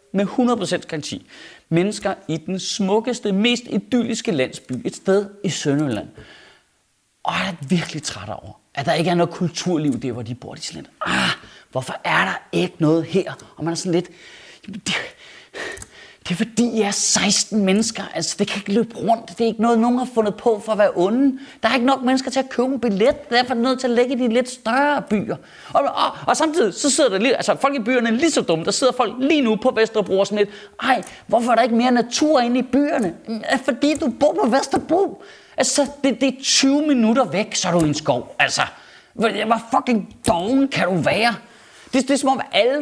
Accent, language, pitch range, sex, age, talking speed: native, Danish, 190-265 Hz, male, 30-49, 220 wpm